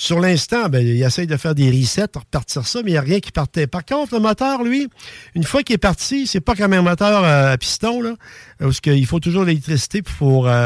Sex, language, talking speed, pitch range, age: male, French, 240 wpm, 135-200 Hz, 50-69